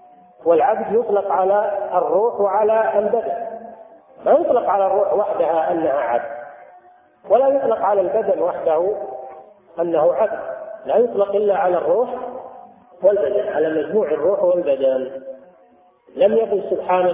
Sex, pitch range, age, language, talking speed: male, 175-250 Hz, 40-59, Arabic, 115 wpm